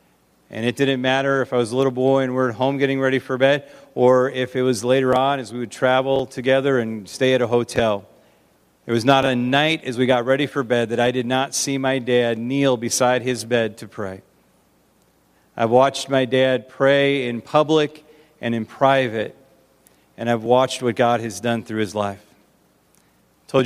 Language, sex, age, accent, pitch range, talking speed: English, male, 40-59, American, 115-130 Hz, 200 wpm